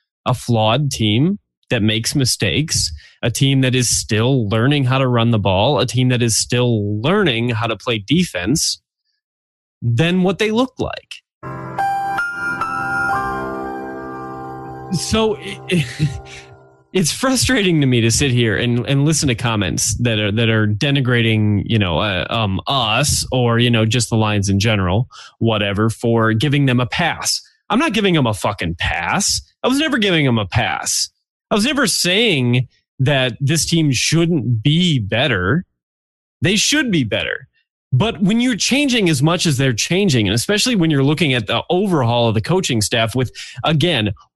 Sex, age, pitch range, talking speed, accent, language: male, 20-39, 110-160 Hz, 160 wpm, American, English